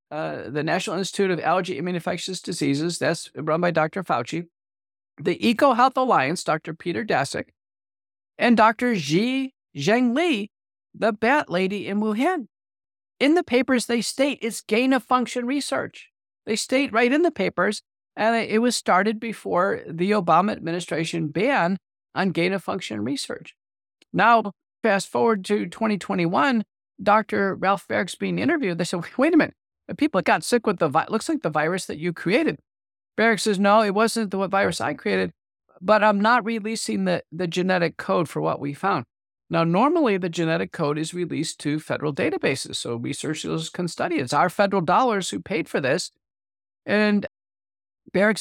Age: 50-69